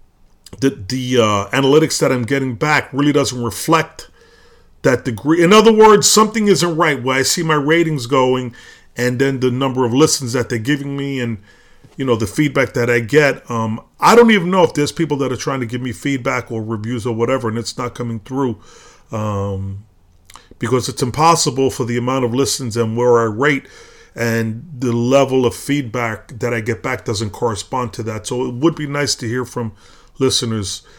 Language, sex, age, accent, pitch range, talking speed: English, male, 30-49, American, 110-135 Hz, 200 wpm